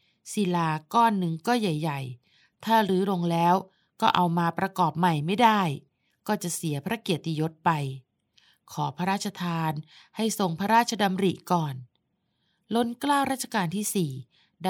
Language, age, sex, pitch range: Thai, 20-39, female, 160-200 Hz